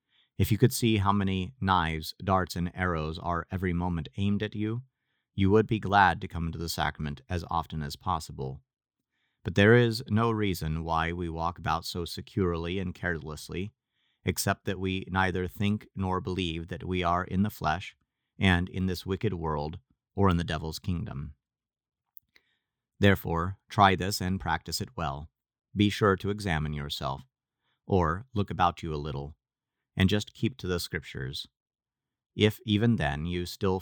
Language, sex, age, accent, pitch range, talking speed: English, male, 30-49, American, 80-100 Hz, 165 wpm